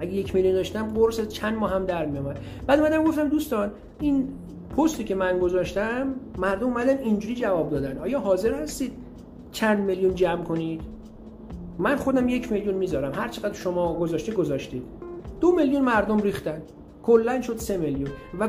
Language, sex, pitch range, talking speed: Persian, male, 145-210 Hz, 160 wpm